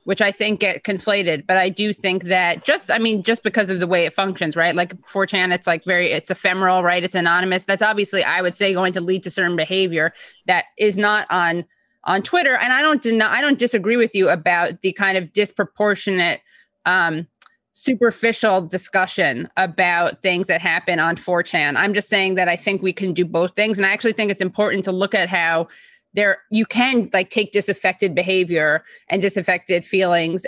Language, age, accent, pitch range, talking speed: English, 20-39, American, 170-200 Hz, 200 wpm